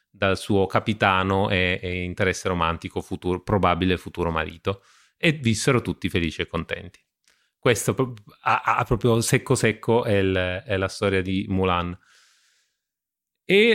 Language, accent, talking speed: Italian, native, 125 wpm